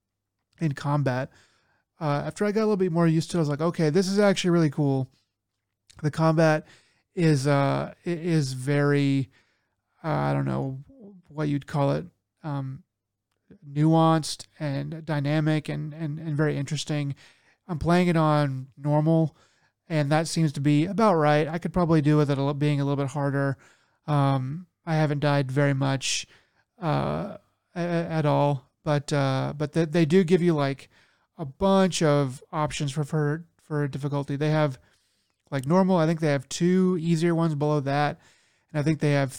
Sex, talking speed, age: male, 170 wpm, 30-49